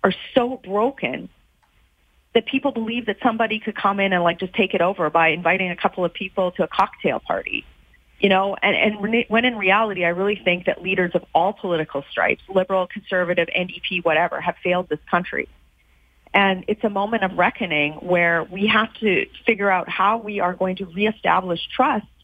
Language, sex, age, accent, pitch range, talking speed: English, female, 30-49, American, 180-230 Hz, 190 wpm